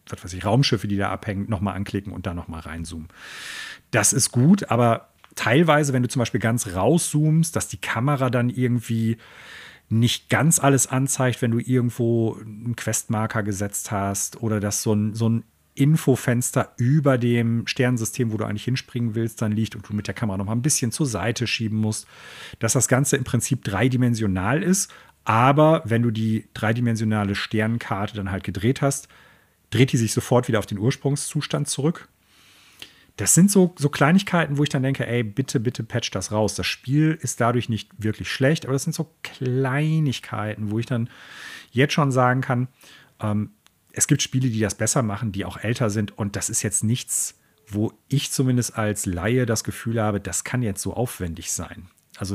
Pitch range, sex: 105-135 Hz, male